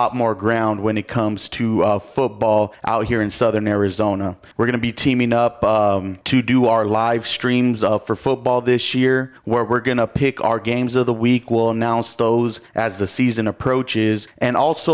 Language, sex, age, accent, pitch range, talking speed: English, male, 30-49, American, 110-125 Hz, 195 wpm